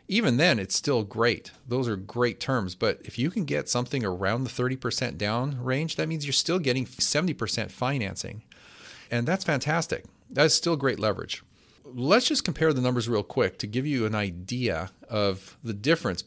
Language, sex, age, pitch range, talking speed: English, male, 40-59, 100-125 Hz, 180 wpm